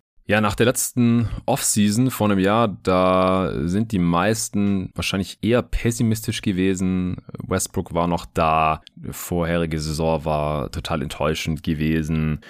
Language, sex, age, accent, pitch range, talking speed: German, male, 20-39, German, 80-105 Hz, 130 wpm